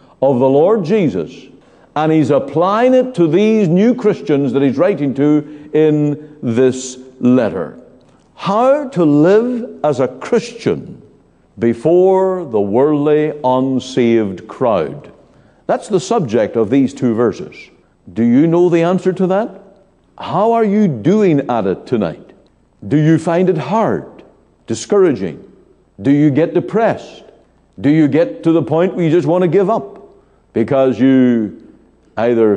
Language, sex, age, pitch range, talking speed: English, male, 60-79, 115-175 Hz, 140 wpm